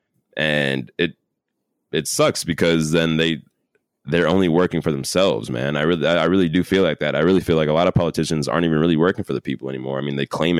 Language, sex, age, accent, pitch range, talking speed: English, male, 20-39, American, 75-90 Hz, 230 wpm